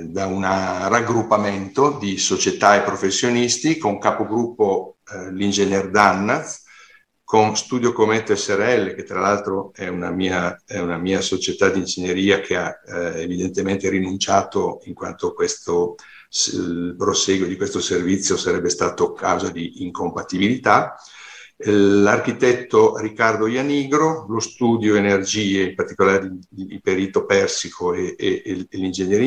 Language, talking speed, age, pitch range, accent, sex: Italian, 125 wpm, 50-69, 95-120 Hz, native, male